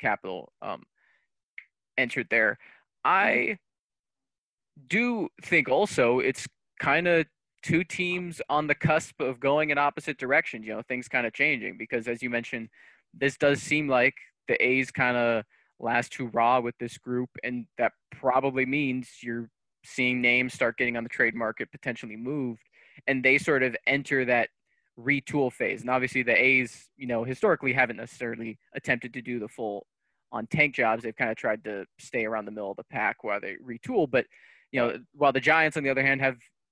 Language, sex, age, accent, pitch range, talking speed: English, male, 20-39, American, 120-140 Hz, 180 wpm